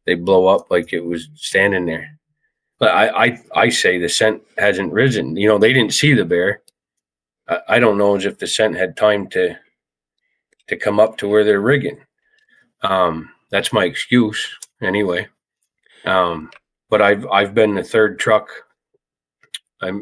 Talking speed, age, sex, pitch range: 170 wpm, 40-59, male, 95-110 Hz